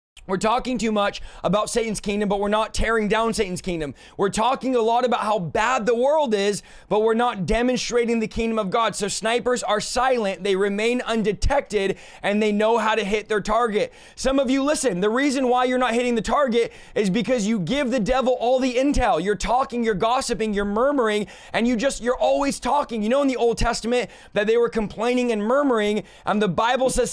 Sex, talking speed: male, 210 wpm